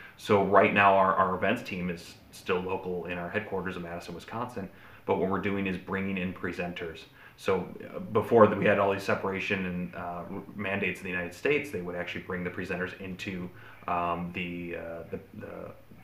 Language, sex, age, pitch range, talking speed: English, male, 30-49, 90-100 Hz, 190 wpm